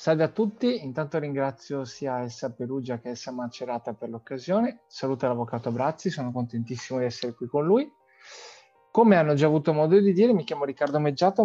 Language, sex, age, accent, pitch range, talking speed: Italian, male, 30-49, native, 125-155 Hz, 180 wpm